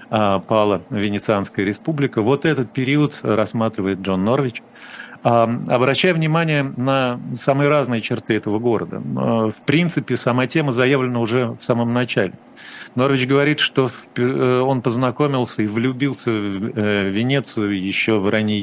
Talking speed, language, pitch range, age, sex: 120 wpm, Russian, 105-130 Hz, 40-59, male